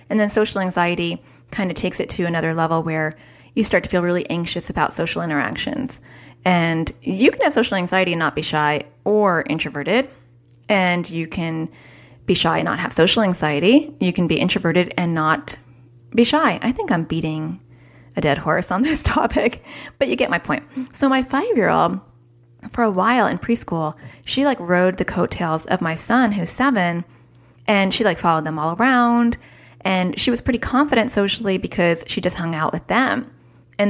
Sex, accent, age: female, American, 30-49